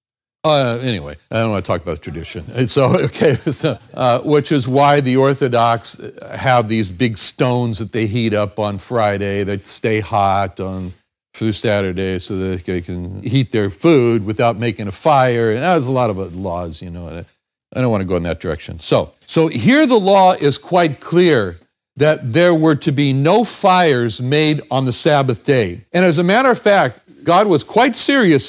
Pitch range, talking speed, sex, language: 115-160 Hz, 195 wpm, male, English